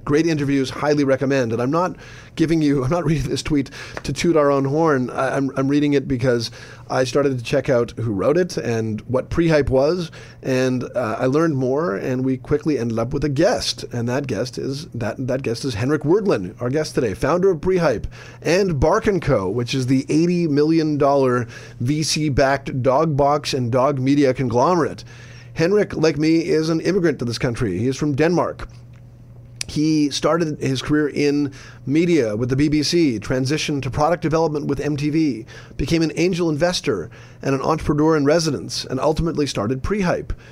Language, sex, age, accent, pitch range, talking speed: English, male, 30-49, American, 125-150 Hz, 180 wpm